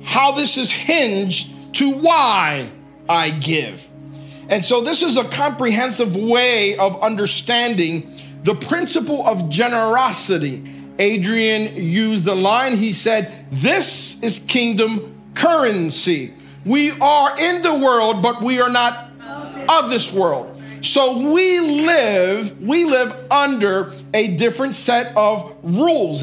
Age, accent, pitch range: 50-69, American, 190-270 Hz